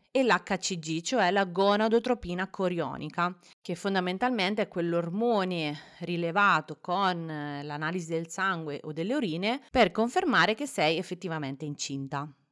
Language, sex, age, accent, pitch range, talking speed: Italian, female, 30-49, native, 160-210 Hz, 115 wpm